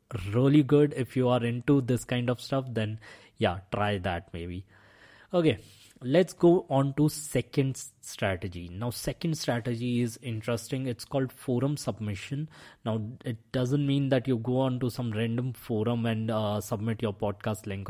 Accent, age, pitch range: Indian, 20-39, 110-135 Hz